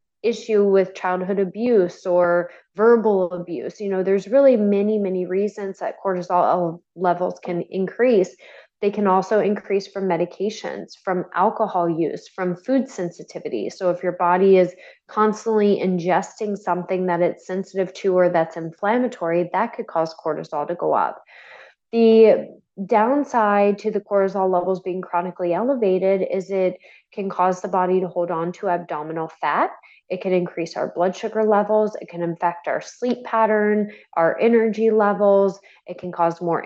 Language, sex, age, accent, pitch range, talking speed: English, female, 20-39, American, 175-210 Hz, 155 wpm